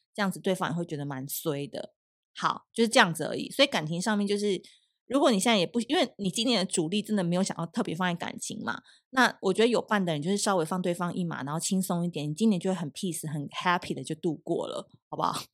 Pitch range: 170-225 Hz